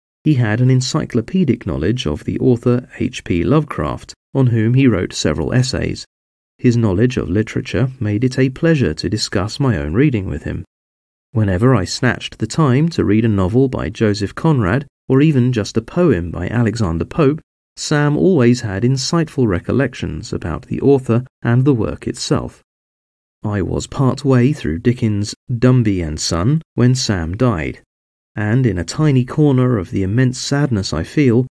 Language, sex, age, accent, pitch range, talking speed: English, male, 40-59, British, 100-130 Hz, 165 wpm